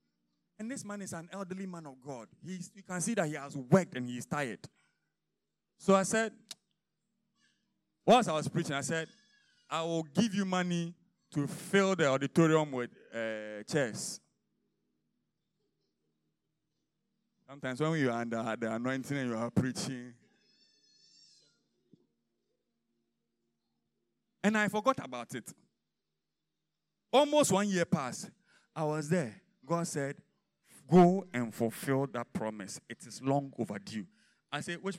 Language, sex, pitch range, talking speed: English, male, 130-195 Hz, 135 wpm